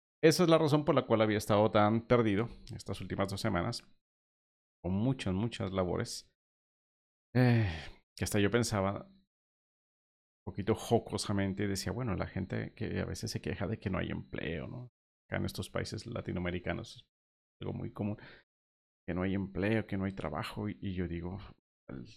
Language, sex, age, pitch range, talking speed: Spanish, male, 40-59, 90-115 Hz, 175 wpm